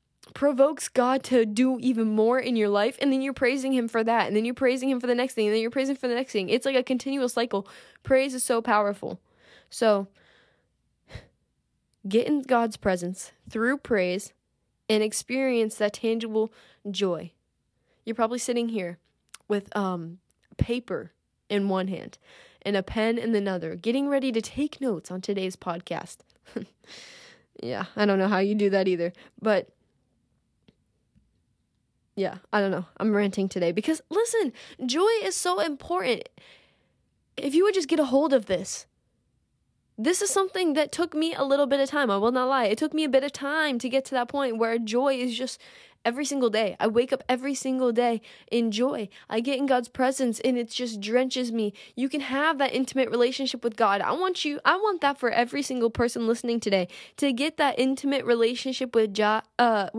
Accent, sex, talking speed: American, female, 190 wpm